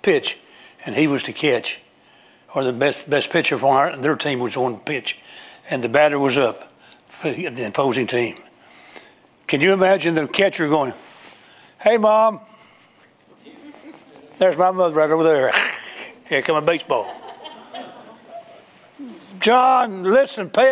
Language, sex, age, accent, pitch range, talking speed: English, male, 60-79, American, 155-200 Hz, 140 wpm